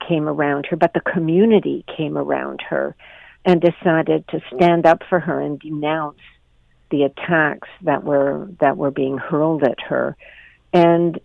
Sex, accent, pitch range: female, American, 150-185 Hz